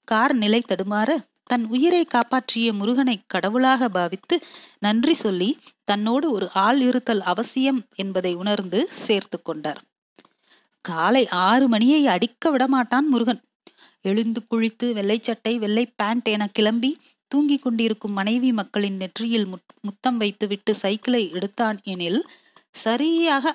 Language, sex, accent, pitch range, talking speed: Tamil, female, native, 205-255 Hz, 110 wpm